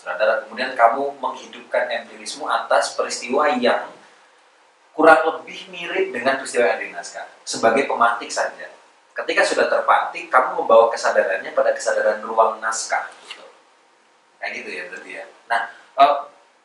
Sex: male